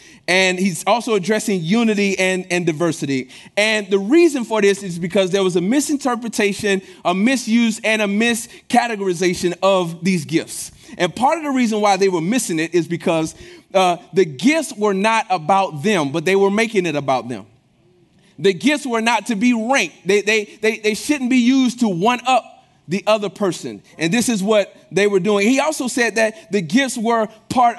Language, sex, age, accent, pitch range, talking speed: English, male, 30-49, American, 170-225 Hz, 190 wpm